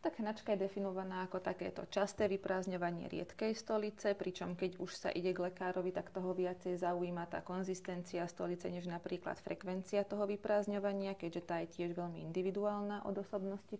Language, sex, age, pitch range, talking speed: Slovak, female, 30-49, 175-190 Hz, 160 wpm